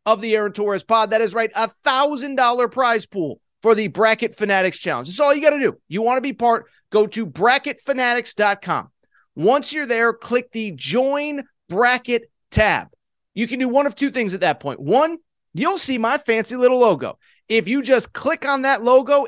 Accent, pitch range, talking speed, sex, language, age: American, 210-270 Hz, 195 wpm, male, English, 30-49